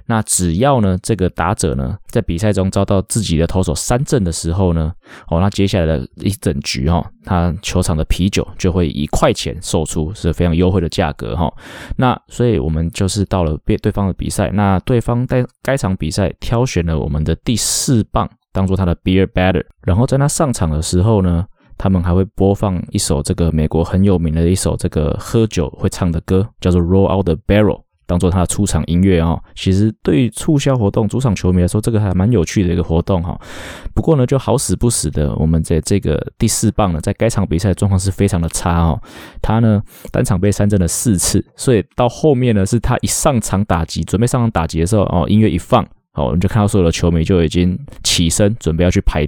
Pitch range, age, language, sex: 85-105 Hz, 20-39, Chinese, male